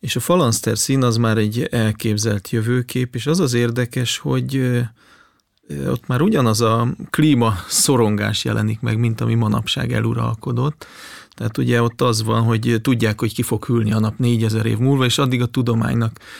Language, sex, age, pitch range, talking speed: Hungarian, male, 40-59, 115-125 Hz, 170 wpm